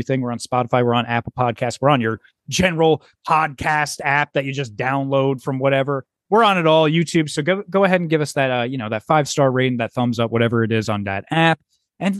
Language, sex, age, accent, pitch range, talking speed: English, male, 20-39, American, 120-165 Hz, 240 wpm